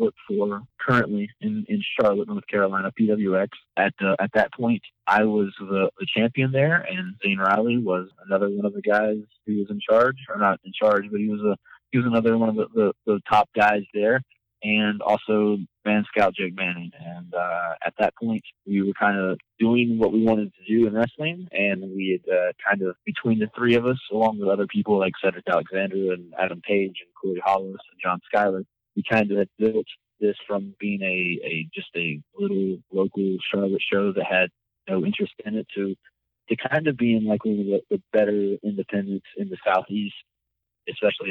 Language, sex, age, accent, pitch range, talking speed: English, male, 20-39, American, 95-115 Hz, 200 wpm